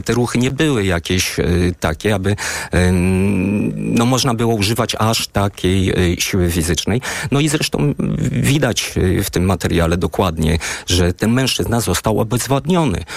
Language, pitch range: Polish, 80-105 Hz